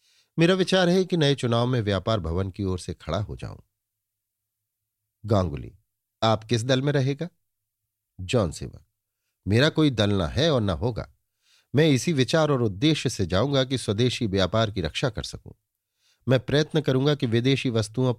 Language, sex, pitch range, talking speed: Hindi, male, 100-125 Hz, 170 wpm